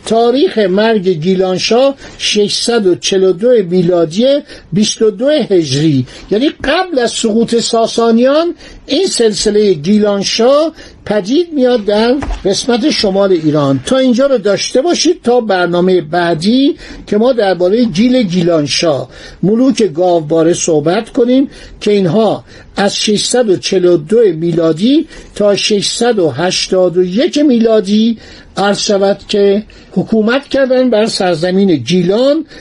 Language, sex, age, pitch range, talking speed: Persian, male, 60-79, 180-245 Hz, 100 wpm